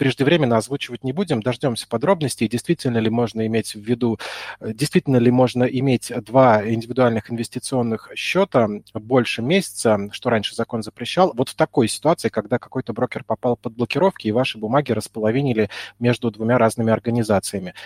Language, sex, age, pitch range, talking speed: Russian, male, 20-39, 110-135 Hz, 150 wpm